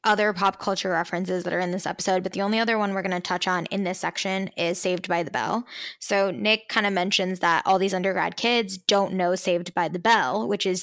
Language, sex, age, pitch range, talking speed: English, female, 10-29, 190-215 Hz, 250 wpm